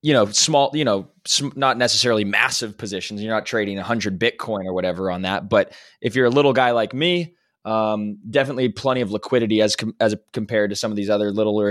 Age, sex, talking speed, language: 20-39, male, 220 wpm, English